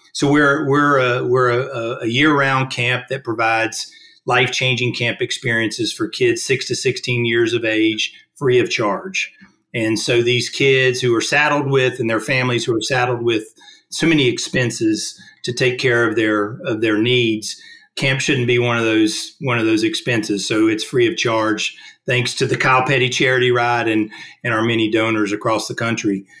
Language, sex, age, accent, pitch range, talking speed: English, male, 40-59, American, 115-145 Hz, 185 wpm